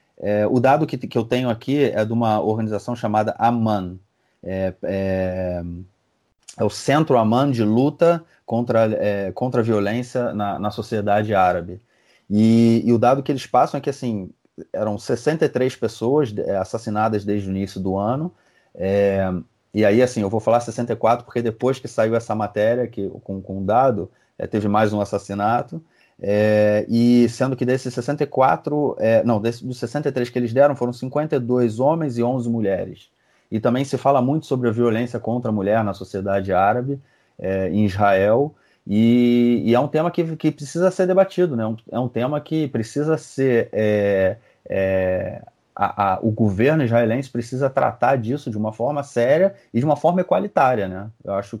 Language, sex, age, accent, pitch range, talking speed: Portuguese, male, 30-49, Brazilian, 105-130 Hz, 175 wpm